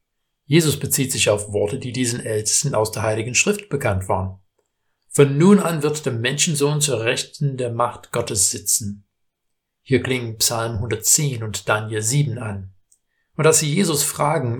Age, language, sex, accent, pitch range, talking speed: 60-79, German, male, German, 110-145 Hz, 160 wpm